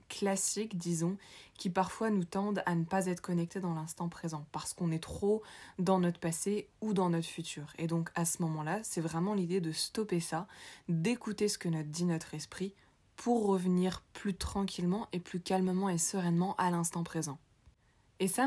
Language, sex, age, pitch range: French, female, 20-39, 165-195 Hz